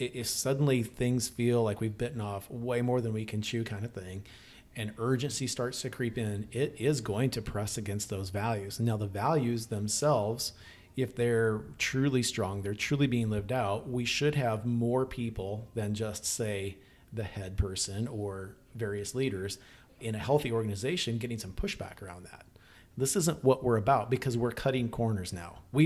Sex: male